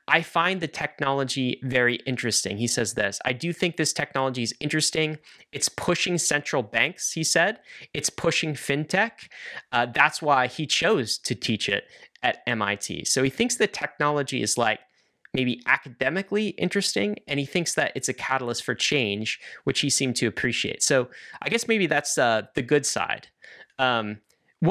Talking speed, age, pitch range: 170 wpm, 30-49, 120-160 Hz